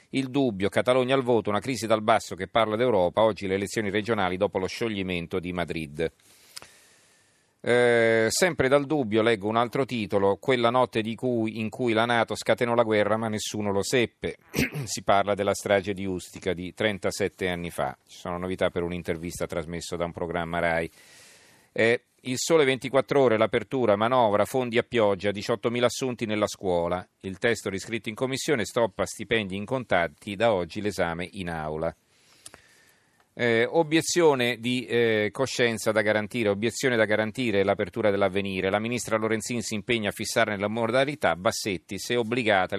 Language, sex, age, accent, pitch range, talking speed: Italian, male, 40-59, native, 95-120 Hz, 165 wpm